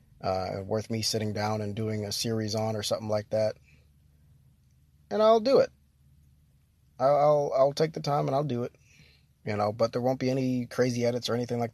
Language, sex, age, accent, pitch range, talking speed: English, male, 20-39, American, 100-140 Hz, 200 wpm